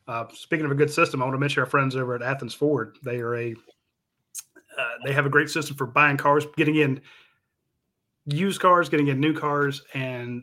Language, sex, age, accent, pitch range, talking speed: English, male, 30-49, American, 125-150 Hz, 205 wpm